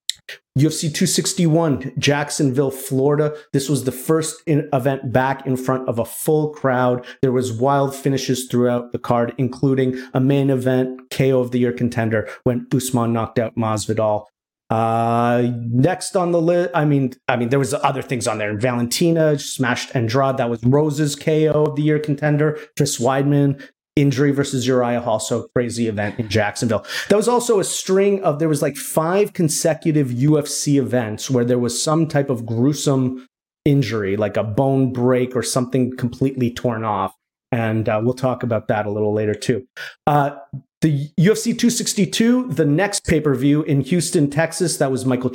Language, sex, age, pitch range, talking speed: English, male, 30-49, 120-150 Hz, 170 wpm